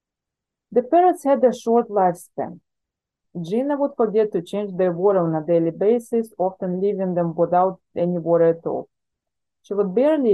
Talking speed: 165 wpm